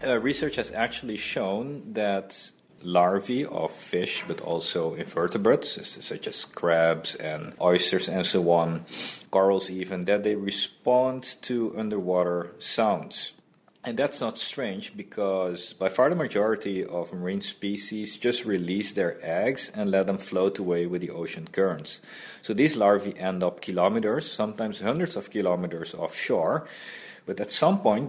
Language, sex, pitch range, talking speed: English, male, 95-120 Hz, 145 wpm